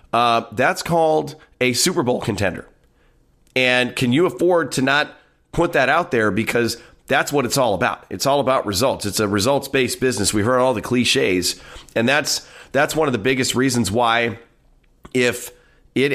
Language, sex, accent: English, male, American